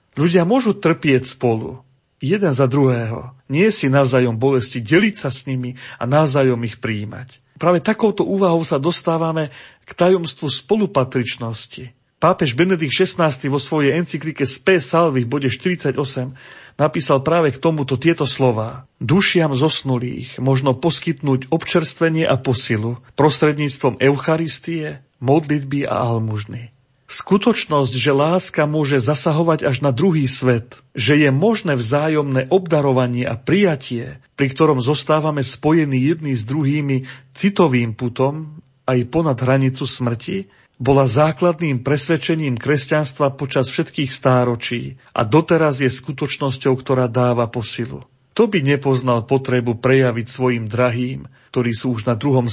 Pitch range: 125-155 Hz